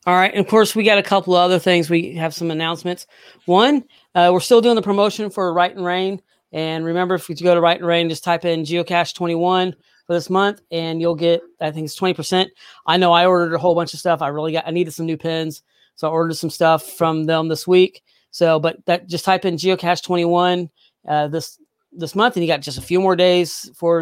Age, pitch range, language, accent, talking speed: 40-59, 160-185 Hz, English, American, 245 wpm